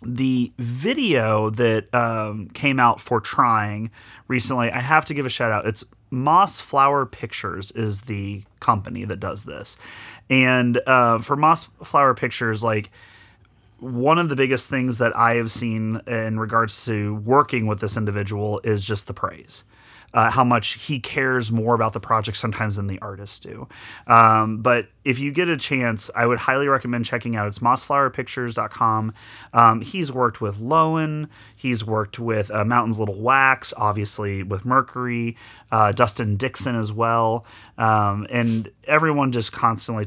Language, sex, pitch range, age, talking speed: English, male, 105-125 Hz, 30-49, 160 wpm